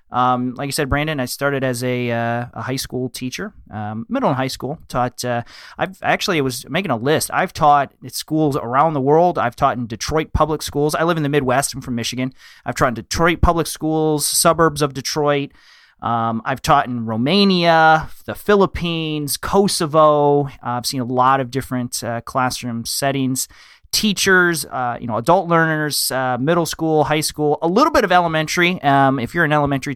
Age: 30-49